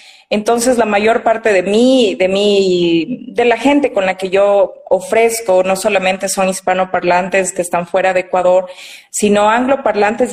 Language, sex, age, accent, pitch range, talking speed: Spanish, female, 30-49, Mexican, 185-250 Hz, 155 wpm